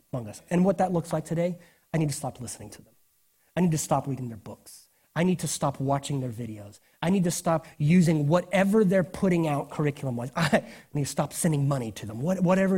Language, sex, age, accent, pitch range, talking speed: English, male, 30-49, American, 135-180 Hz, 225 wpm